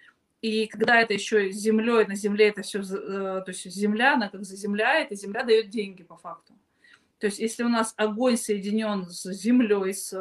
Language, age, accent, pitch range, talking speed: Russian, 20-39, native, 200-245 Hz, 180 wpm